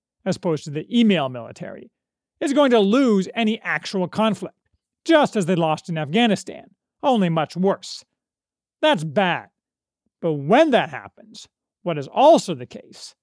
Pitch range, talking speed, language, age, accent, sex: 170-235 Hz, 150 wpm, English, 40-59, American, male